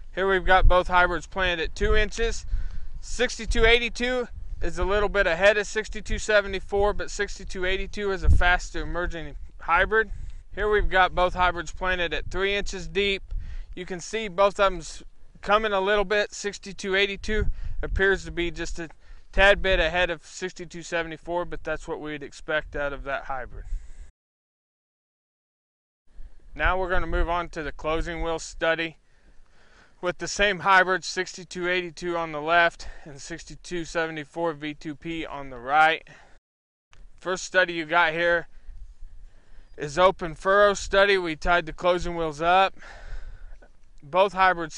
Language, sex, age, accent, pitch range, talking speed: English, male, 20-39, American, 155-195 Hz, 140 wpm